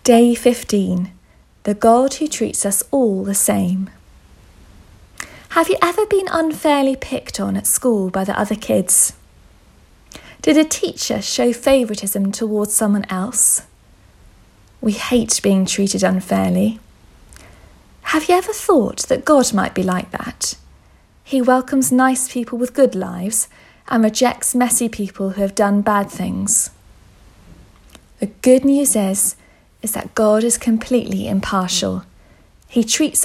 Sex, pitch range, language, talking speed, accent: female, 190-250 Hz, English, 135 wpm, British